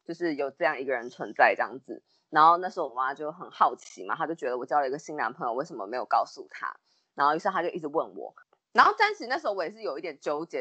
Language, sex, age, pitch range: Chinese, female, 20-39, 165-250 Hz